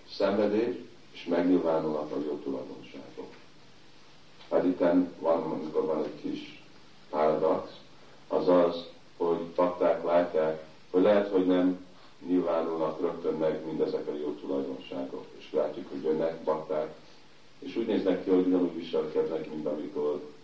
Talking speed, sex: 130 wpm, male